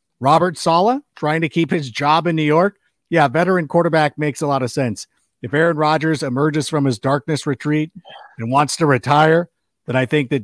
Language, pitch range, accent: English, 135-180 Hz, American